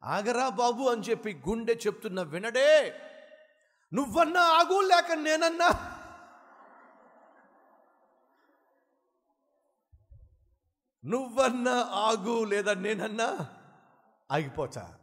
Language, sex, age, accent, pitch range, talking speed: Telugu, male, 60-79, native, 175-255 Hz, 65 wpm